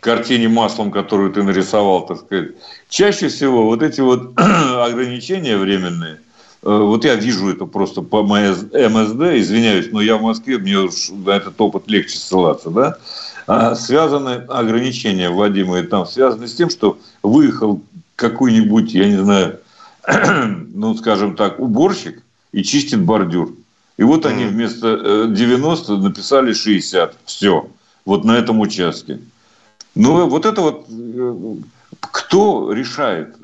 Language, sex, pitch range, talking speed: Russian, male, 100-125 Hz, 135 wpm